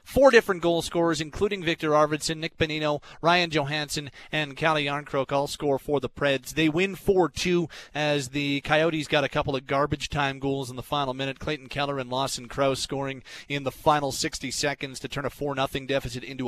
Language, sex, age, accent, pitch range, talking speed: English, male, 30-49, American, 140-170 Hz, 200 wpm